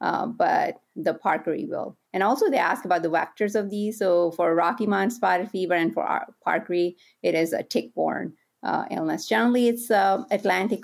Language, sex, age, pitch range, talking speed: English, female, 30-49, 165-195 Hz, 190 wpm